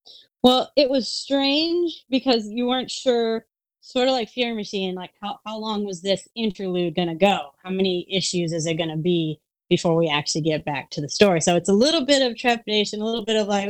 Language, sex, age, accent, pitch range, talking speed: English, female, 20-39, American, 165-215 Hz, 220 wpm